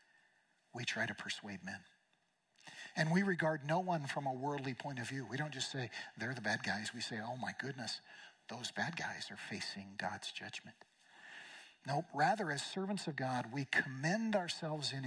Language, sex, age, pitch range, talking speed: English, male, 50-69, 130-165 Hz, 185 wpm